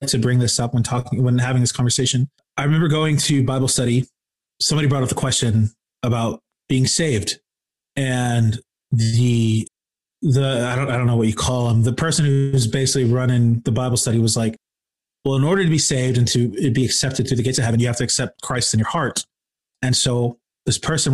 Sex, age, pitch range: male, 30-49, 120-145 Hz